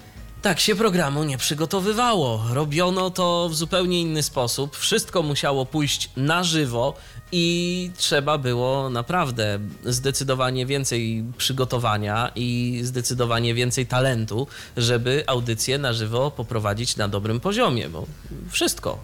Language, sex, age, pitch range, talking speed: Polish, male, 20-39, 115-165 Hz, 115 wpm